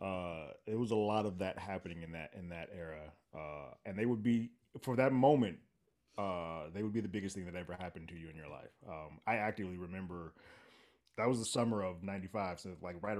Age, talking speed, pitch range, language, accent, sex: 20-39, 225 wpm, 90-120 Hz, English, American, male